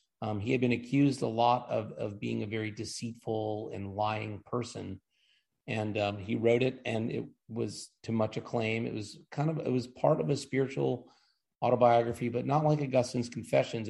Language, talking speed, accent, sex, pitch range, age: English, 185 wpm, American, male, 110-125 Hz, 30-49